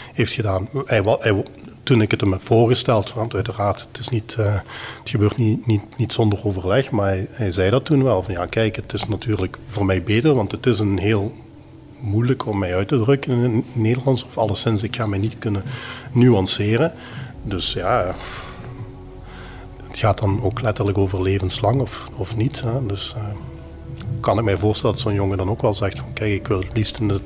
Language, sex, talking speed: Dutch, male, 210 wpm